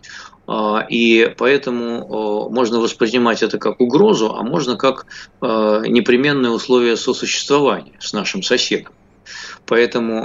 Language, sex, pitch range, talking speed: Russian, male, 105-125 Hz, 100 wpm